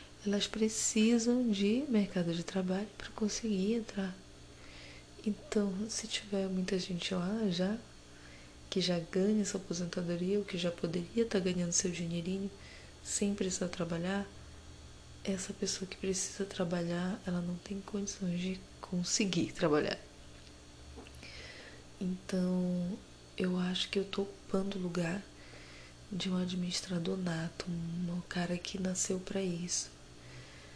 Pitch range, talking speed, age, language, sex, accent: 170-200 Hz, 125 wpm, 20-39, Portuguese, female, Brazilian